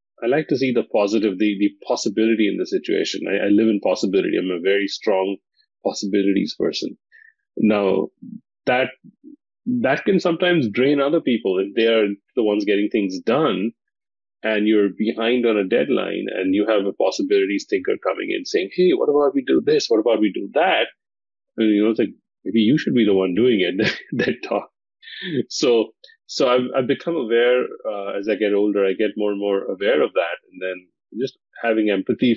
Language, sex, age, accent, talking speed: English, male, 30-49, Indian, 195 wpm